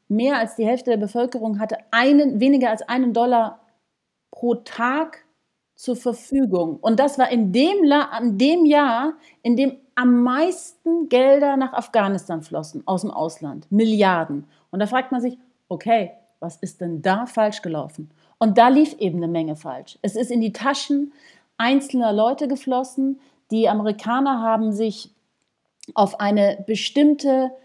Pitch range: 210-270 Hz